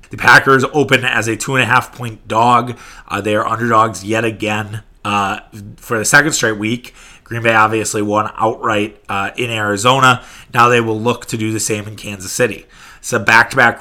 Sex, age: male, 30-49